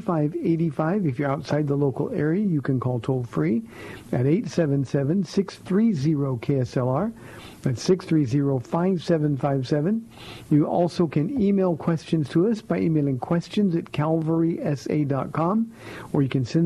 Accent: American